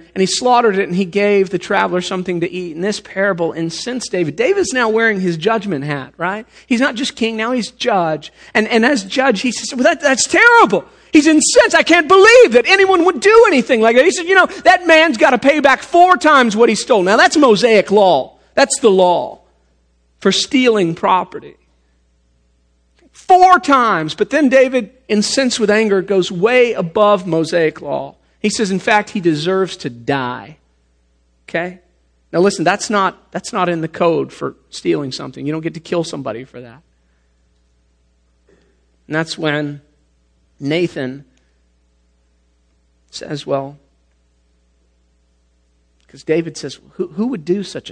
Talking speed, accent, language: 165 wpm, American, English